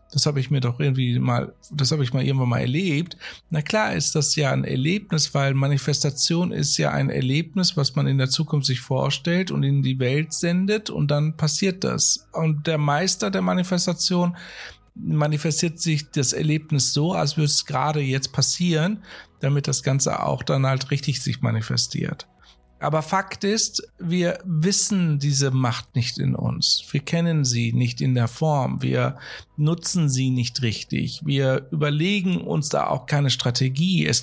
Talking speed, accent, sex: 170 wpm, German, male